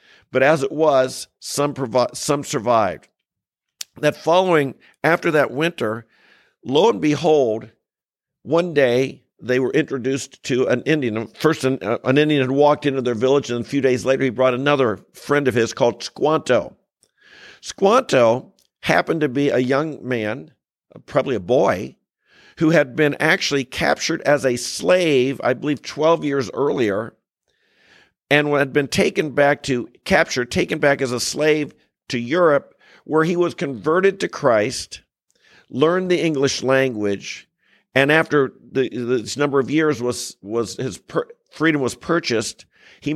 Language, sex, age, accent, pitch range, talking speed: English, male, 50-69, American, 130-155 Hz, 150 wpm